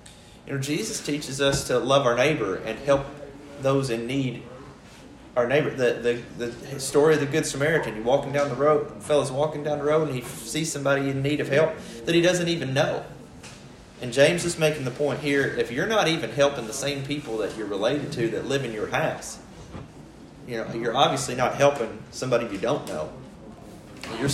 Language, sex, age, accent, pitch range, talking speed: English, male, 30-49, American, 130-150 Hz, 200 wpm